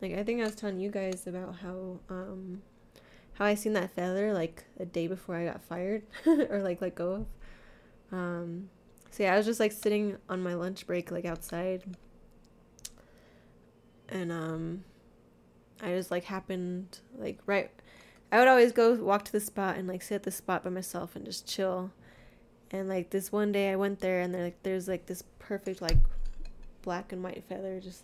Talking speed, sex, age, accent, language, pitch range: 190 wpm, female, 10-29, American, English, 180-205 Hz